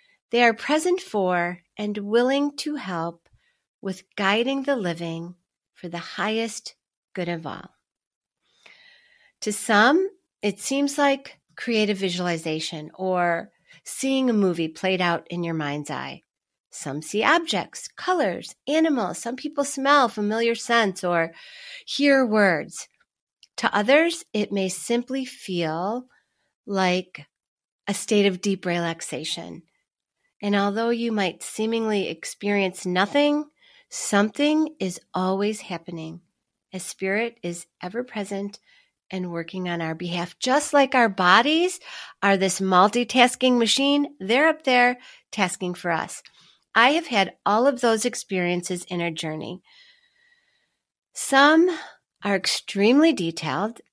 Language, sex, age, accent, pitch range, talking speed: English, female, 40-59, American, 180-270 Hz, 120 wpm